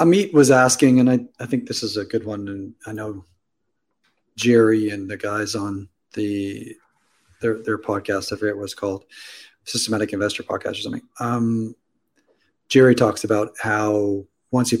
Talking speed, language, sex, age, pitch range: 165 wpm, English, male, 40-59, 110-125 Hz